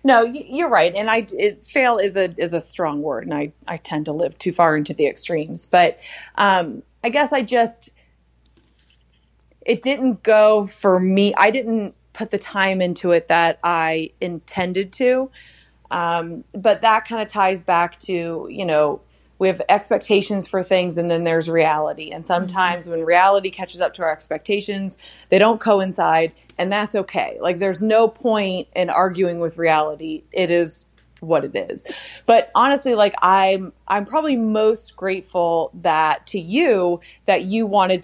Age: 30-49